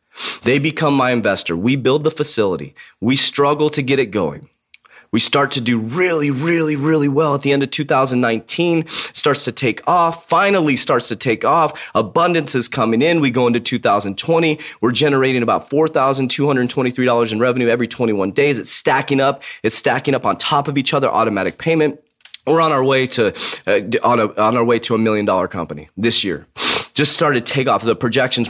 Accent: American